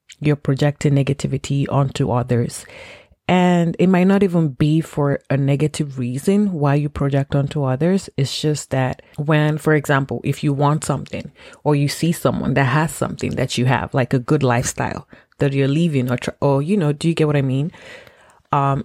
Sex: female